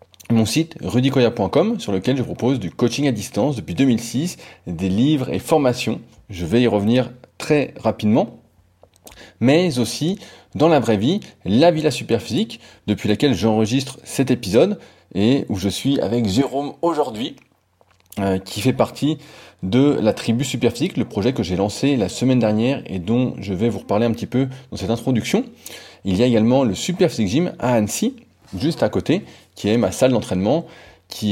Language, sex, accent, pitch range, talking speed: French, male, French, 100-130 Hz, 170 wpm